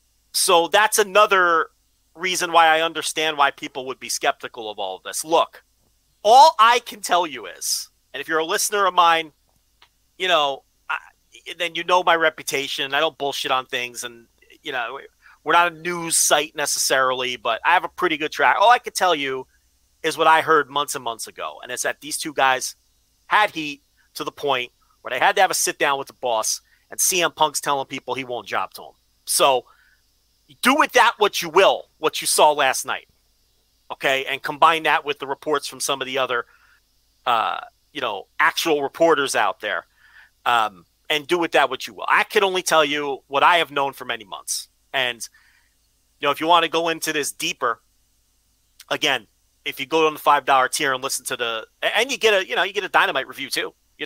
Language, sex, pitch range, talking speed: English, male, 130-175 Hz, 215 wpm